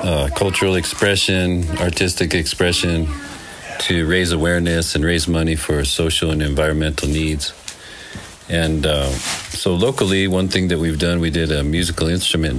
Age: 40-59